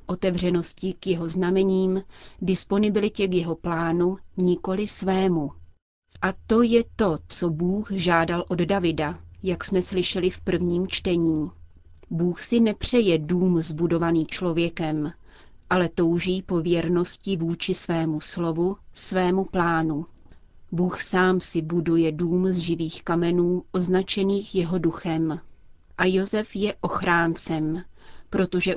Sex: female